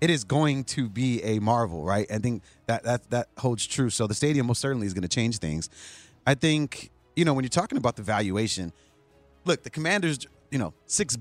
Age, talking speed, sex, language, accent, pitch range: 30-49, 220 wpm, male, English, American, 110-145 Hz